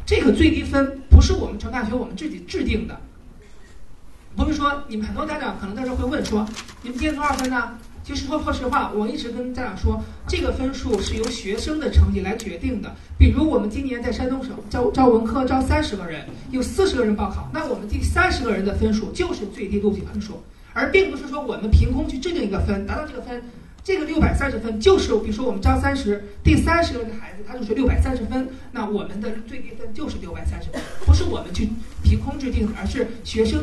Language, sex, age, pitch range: Chinese, male, 40-59, 205-265 Hz